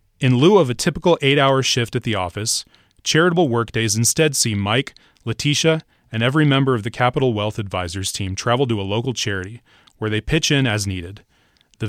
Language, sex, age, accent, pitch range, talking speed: English, male, 30-49, American, 105-135 Hz, 185 wpm